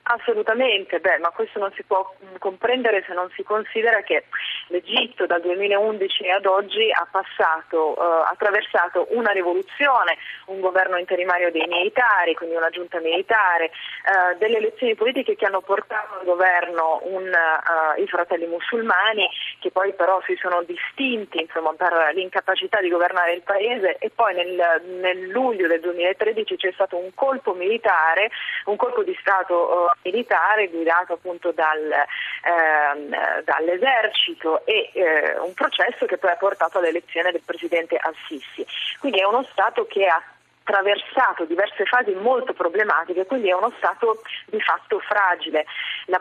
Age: 30-49